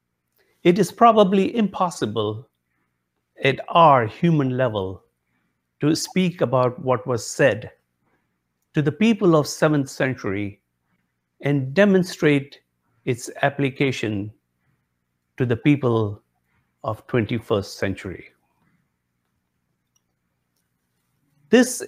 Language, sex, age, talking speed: English, male, 60-79, 85 wpm